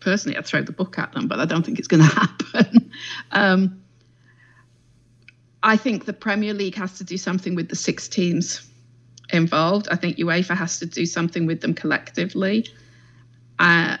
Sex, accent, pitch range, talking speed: female, British, 120-190 Hz, 175 wpm